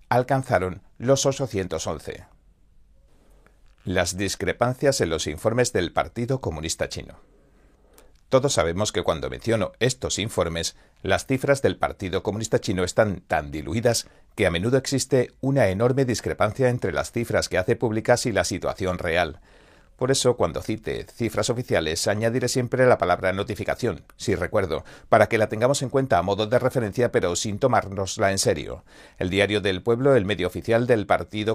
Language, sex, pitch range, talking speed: Spanish, male, 95-125 Hz, 155 wpm